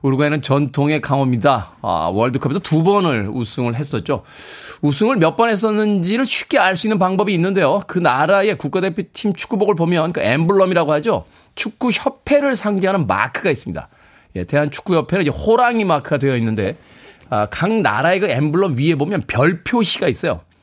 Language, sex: Korean, male